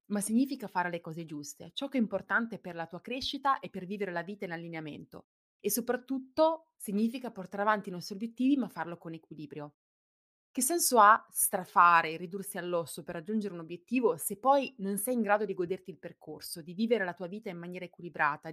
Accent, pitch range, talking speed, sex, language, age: native, 170-230 Hz, 200 wpm, female, Italian, 20-39